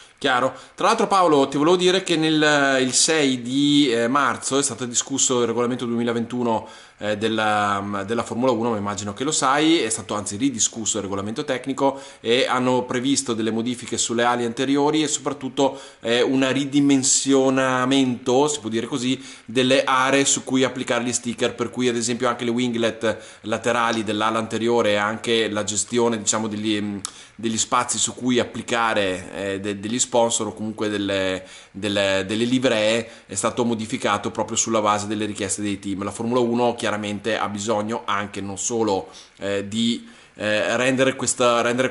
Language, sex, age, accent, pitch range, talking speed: Italian, male, 20-39, native, 105-125 Hz, 165 wpm